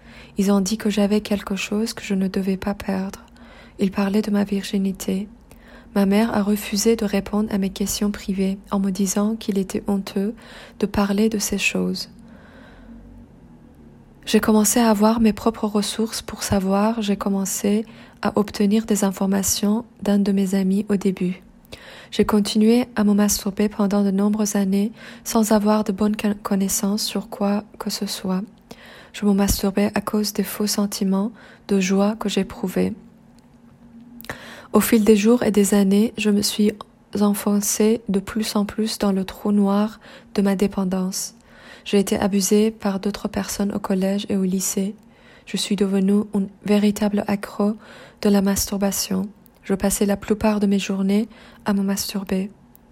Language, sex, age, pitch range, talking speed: English, female, 20-39, 200-215 Hz, 160 wpm